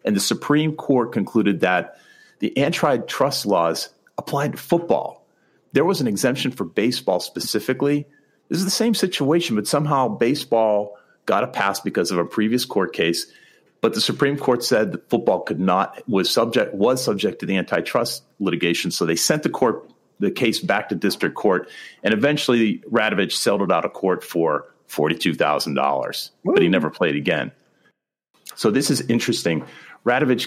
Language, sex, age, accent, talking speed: English, male, 40-59, American, 170 wpm